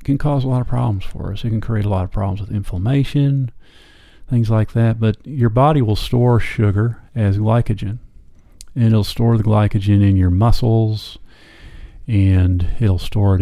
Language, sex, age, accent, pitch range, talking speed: English, male, 40-59, American, 100-120 Hz, 180 wpm